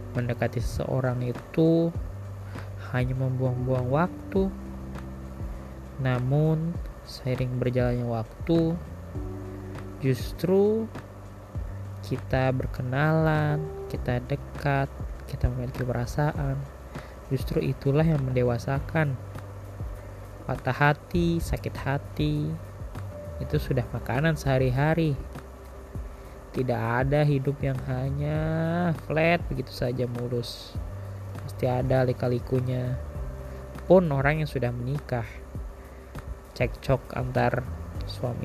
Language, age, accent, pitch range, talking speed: Indonesian, 20-39, native, 95-135 Hz, 80 wpm